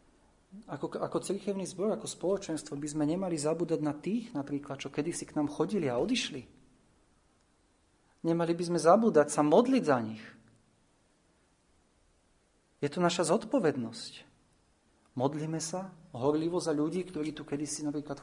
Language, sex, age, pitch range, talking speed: Slovak, male, 40-59, 125-165 Hz, 140 wpm